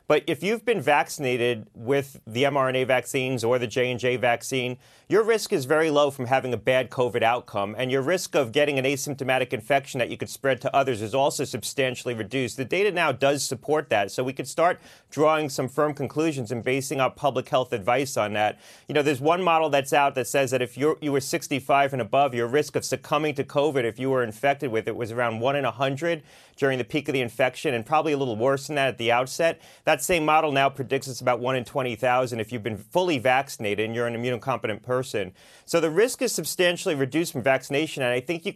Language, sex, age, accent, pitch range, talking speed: English, male, 40-59, American, 125-155 Hz, 225 wpm